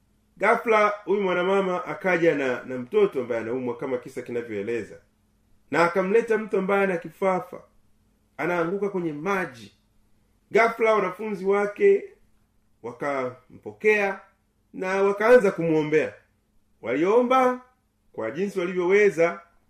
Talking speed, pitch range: 100 wpm, 135-200 Hz